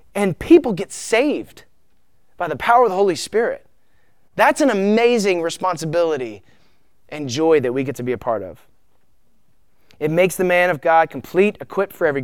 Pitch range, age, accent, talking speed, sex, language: 135-175 Hz, 20-39, American, 170 wpm, male, English